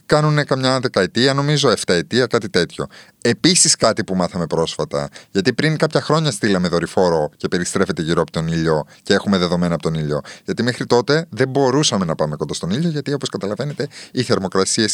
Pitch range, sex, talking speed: 95-150 Hz, male, 185 wpm